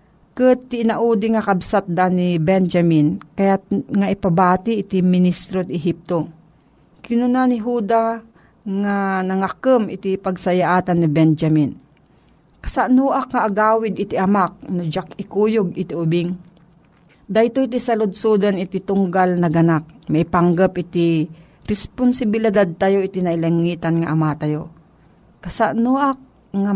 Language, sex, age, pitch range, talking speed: Filipino, female, 40-59, 170-215 Hz, 110 wpm